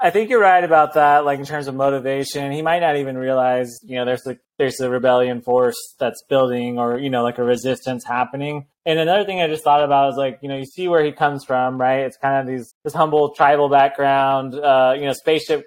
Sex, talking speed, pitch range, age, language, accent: male, 250 wpm, 130-155 Hz, 20-39, English, American